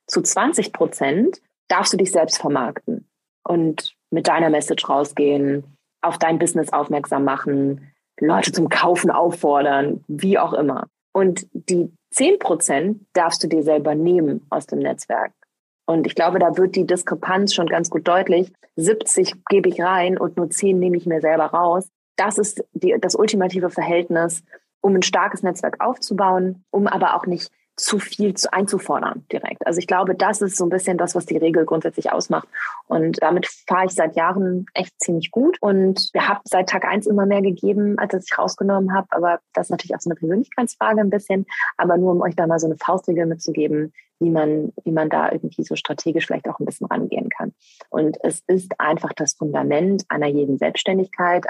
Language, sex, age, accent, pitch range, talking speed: German, female, 20-39, German, 165-195 Hz, 185 wpm